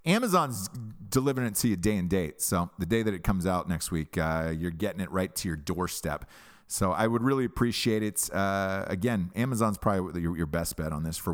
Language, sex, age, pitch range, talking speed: English, male, 40-59, 90-135 Hz, 215 wpm